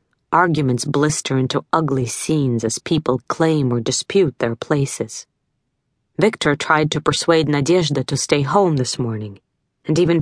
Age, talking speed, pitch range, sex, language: 40-59, 140 wpm, 135-170 Hz, female, English